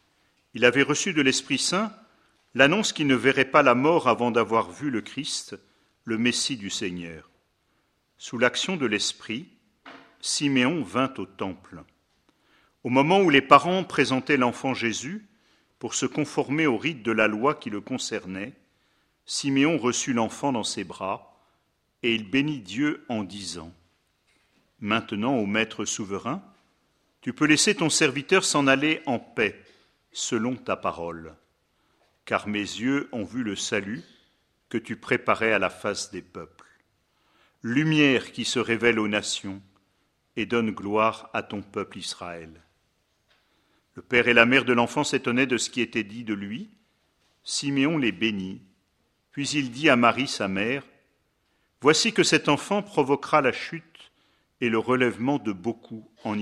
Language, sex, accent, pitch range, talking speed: French, male, French, 105-145 Hz, 150 wpm